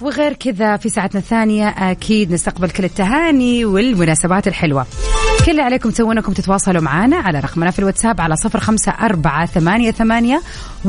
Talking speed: 120 wpm